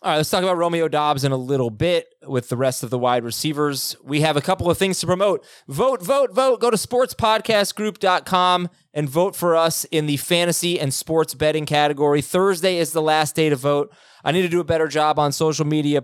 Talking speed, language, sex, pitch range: 225 wpm, English, male, 135-180 Hz